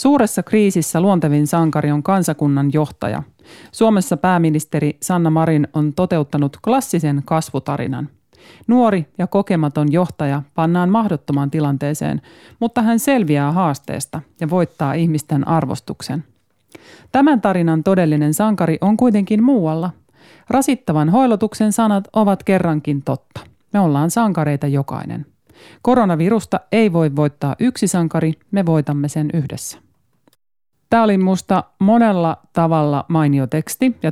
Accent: native